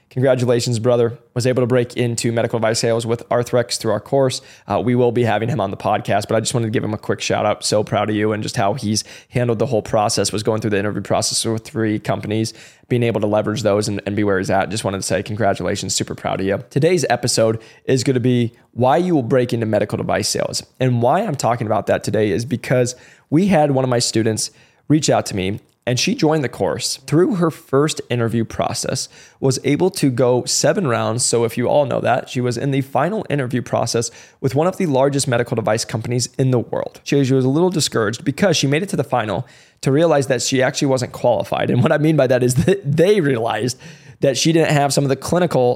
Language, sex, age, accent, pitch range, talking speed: English, male, 20-39, American, 115-140 Hz, 245 wpm